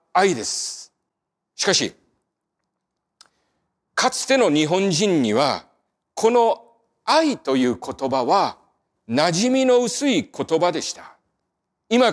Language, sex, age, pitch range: Japanese, male, 40-59, 185-270 Hz